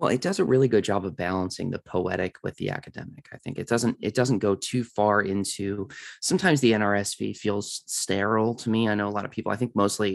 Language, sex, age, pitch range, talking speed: English, male, 20-39, 95-125 Hz, 235 wpm